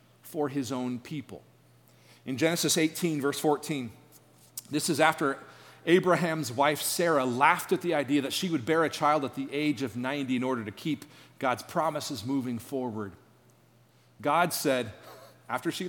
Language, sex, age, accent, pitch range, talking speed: English, male, 40-59, American, 125-165 Hz, 160 wpm